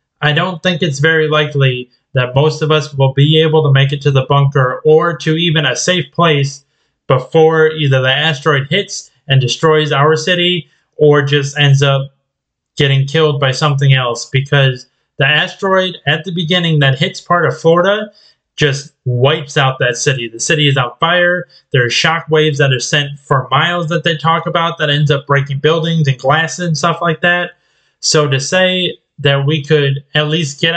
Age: 20-39